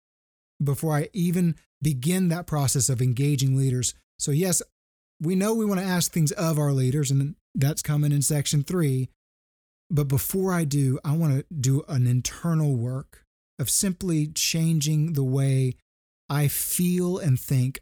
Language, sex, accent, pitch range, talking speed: English, male, American, 130-155 Hz, 160 wpm